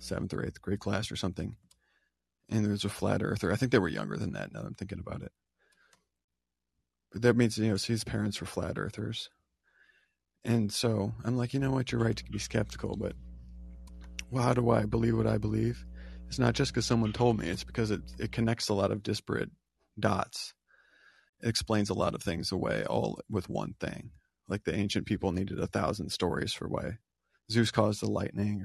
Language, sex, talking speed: English, male, 205 wpm